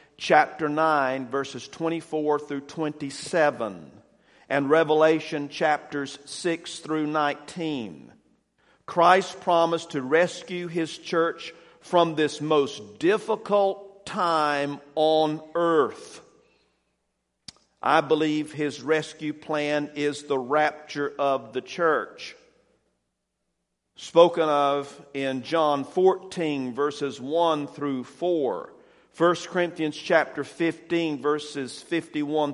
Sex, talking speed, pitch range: male, 95 wpm, 145-170 Hz